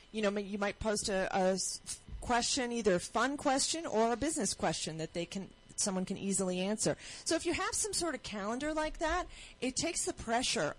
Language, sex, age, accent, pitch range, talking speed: English, female, 40-59, American, 190-235 Hz, 210 wpm